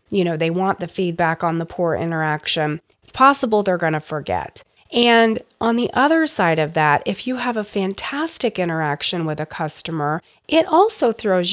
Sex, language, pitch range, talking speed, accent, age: female, English, 170-230 Hz, 180 wpm, American, 30-49